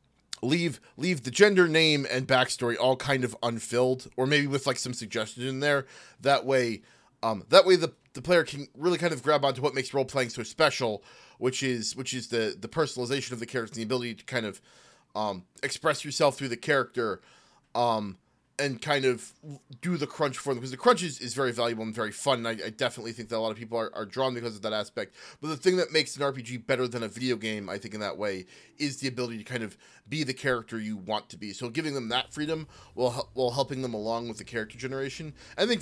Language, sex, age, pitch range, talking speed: English, male, 20-39, 115-140 Hz, 240 wpm